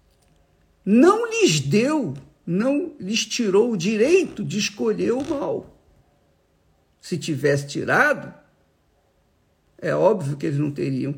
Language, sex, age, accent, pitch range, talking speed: Portuguese, male, 50-69, Brazilian, 145-220 Hz, 115 wpm